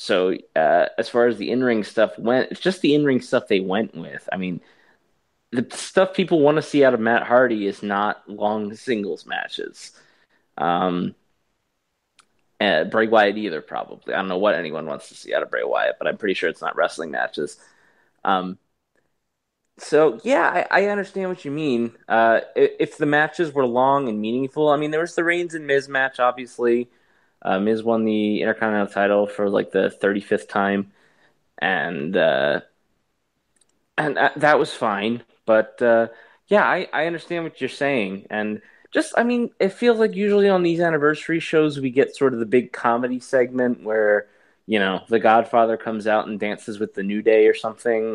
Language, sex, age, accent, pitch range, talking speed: English, male, 20-39, American, 105-145 Hz, 185 wpm